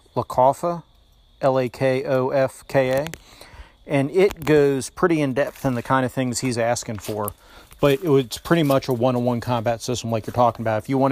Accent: American